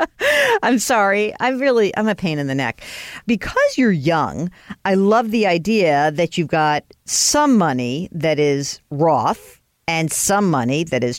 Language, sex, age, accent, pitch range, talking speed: English, female, 50-69, American, 150-210 Hz, 160 wpm